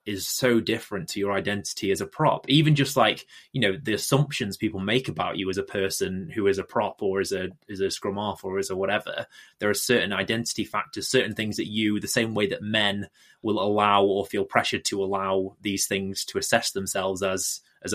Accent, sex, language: British, male, English